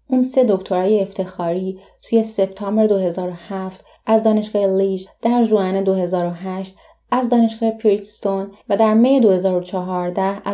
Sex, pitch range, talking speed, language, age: female, 185-220 Hz, 115 wpm, Persian, 20-39